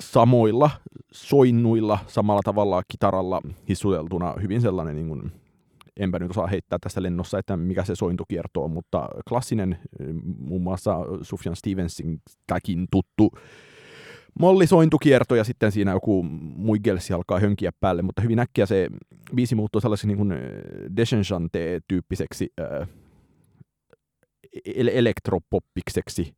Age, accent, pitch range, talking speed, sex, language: 30-49, native, 90-110 Hz, 115 wpm, male, Finnish